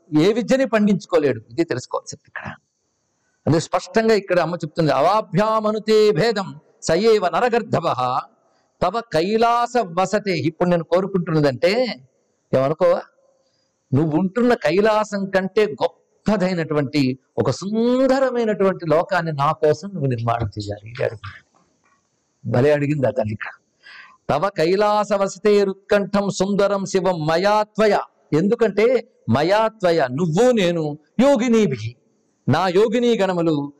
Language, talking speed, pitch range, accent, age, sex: Telugu, 95 wpm, 160-220 Hz, native, 50-69, male